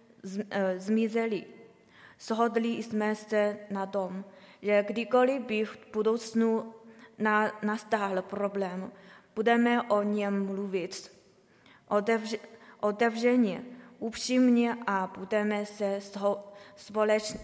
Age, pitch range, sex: 20-39, 205-225 Hz, female